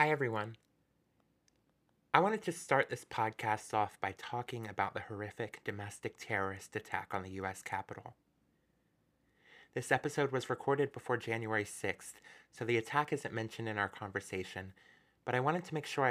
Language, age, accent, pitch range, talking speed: English, 30-49, American, 110-155 Hz, 155 wpm